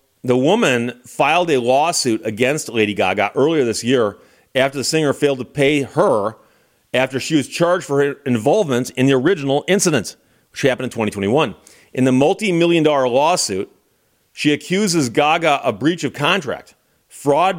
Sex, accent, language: male, American, English